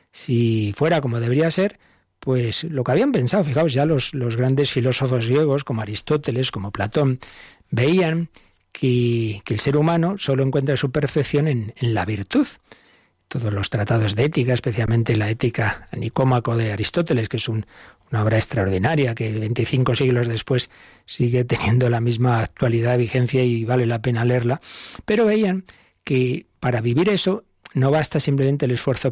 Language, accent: Spanish, Spanish